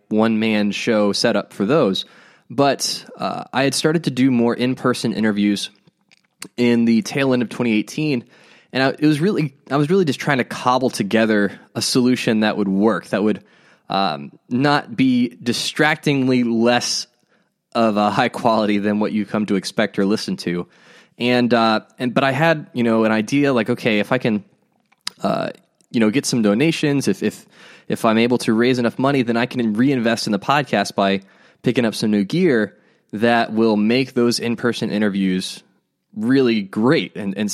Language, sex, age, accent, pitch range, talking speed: English, male, 20-39, American, 105-135 Hz, 185 wpm